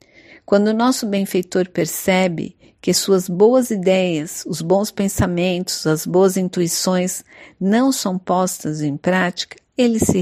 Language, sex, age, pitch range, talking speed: Portuguese, female, 50-69, 185-230 Hz, 130 wpm